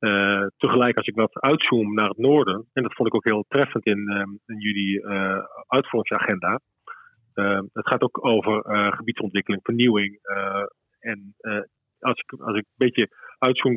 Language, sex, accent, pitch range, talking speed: Dutch, male, Dutch, 105-120 Hz, 175 wpm